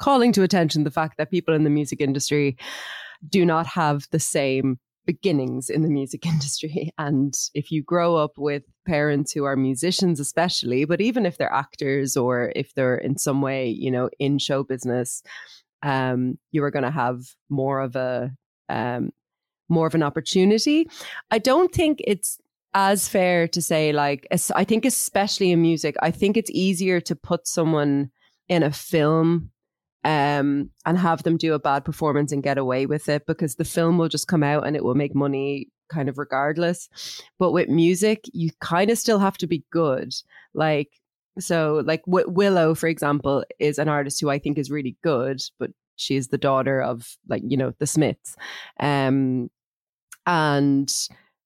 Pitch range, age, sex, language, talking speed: 140-170 Hz, 20-39, female, English, 180 wpm